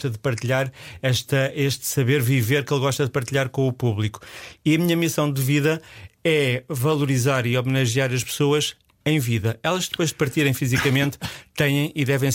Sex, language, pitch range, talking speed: male, Portuguese, 125-150 Hz, 170 wpm